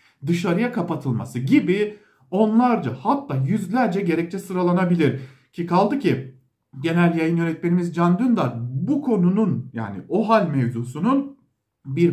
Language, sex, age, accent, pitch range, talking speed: German, male, 50-69, Turkish, 140-210 Hz, 115 wpm